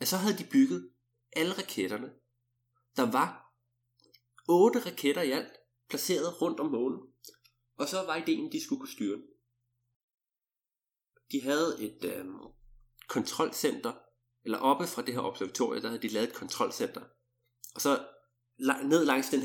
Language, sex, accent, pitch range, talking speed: Danish, male, native, 120-175 Hz, 150 wpm